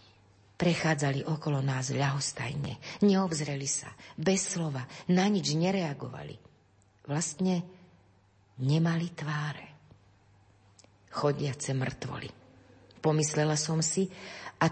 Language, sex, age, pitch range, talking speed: Slovak, female, 40-59, 125-165 Hz, 80 wpm